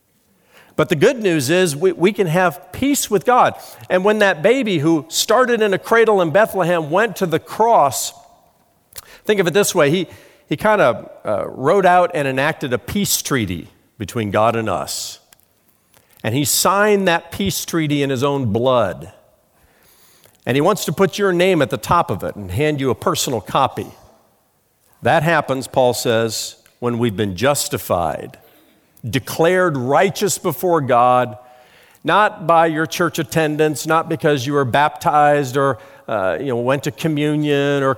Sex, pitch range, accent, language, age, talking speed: male, 120-170 Hz, American, English, 50-69, 165 wpm